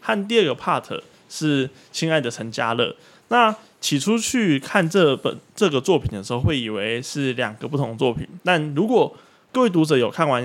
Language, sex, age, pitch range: Chinese, male, 20-39, 120-155 Hz